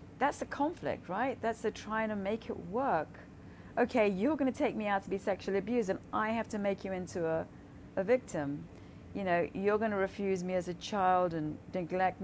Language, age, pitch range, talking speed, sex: English, 40-59, 155-225 Hz, 205 wpm, female